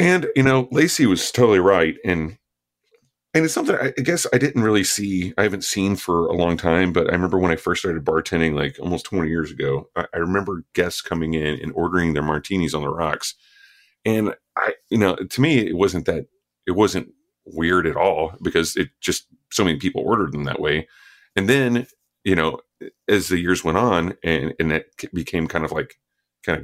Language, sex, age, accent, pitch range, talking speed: English, male, 40-59, American, 75-125 Hz, 215 wpm